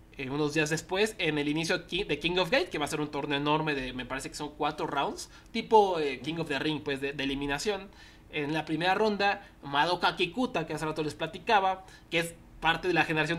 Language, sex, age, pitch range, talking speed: Spanish, male, 20-39, 145-175 Hz, 235 wpm